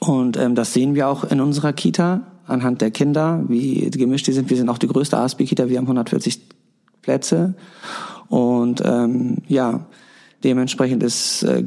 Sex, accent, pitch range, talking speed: male, German, 125-140 Hz, 165 wpm